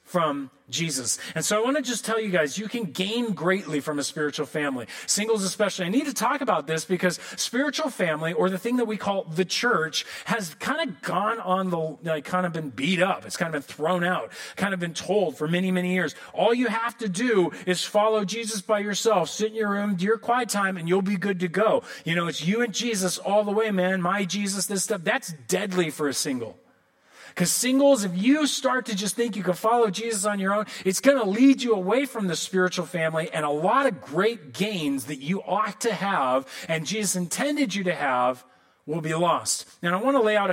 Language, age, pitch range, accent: English, 30-49, 150-210 Hz, American